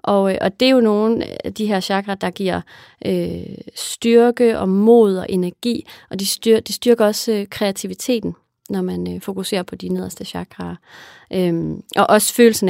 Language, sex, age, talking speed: English, female, 30-49, 180 wpm